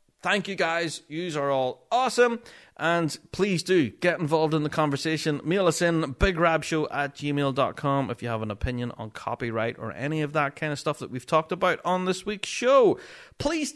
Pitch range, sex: 130-185 Hz, male